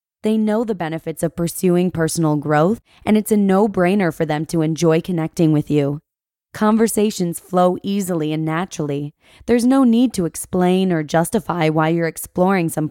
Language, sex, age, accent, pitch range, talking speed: English, female, 20-39, American, 155-200 Hz, 165 wpm